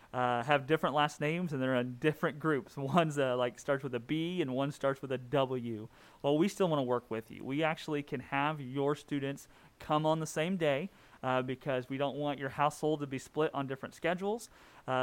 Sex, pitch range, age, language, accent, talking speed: male, 130-160 Hz, 30-49, English, American, 220 wpm